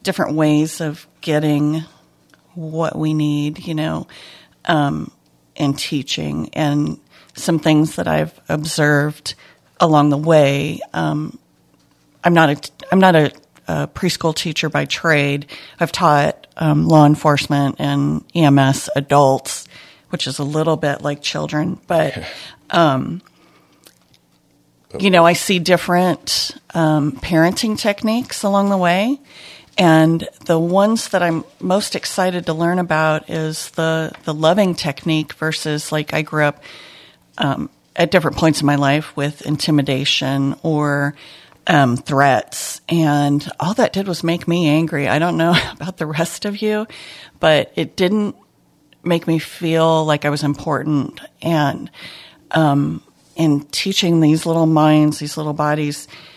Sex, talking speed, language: female, 135 wpm, English